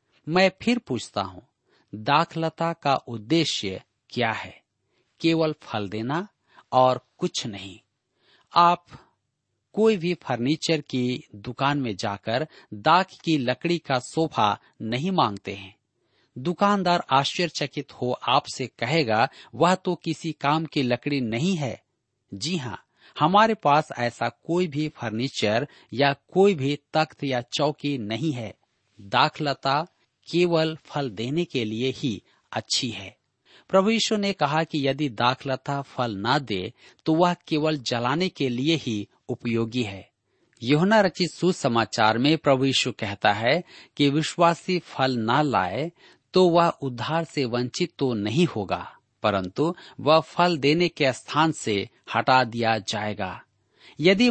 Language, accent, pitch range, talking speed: Hindi, native, 120-165 Hz, 135 wpm